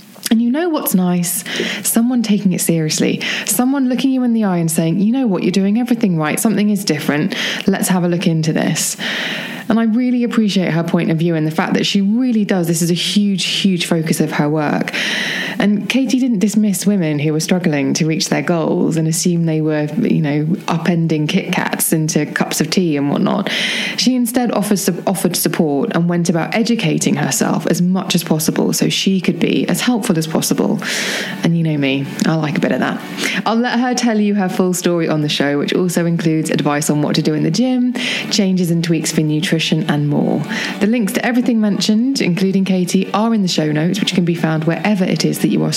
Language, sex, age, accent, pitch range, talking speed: English, female, 20-39, British, 165-220 Hz, 220 wpm